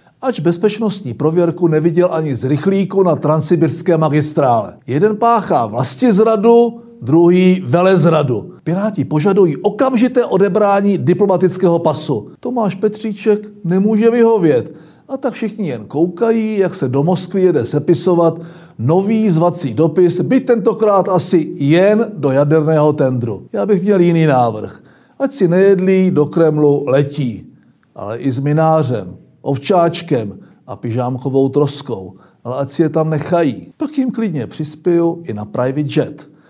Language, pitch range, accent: Czech, 145-205 Hz, native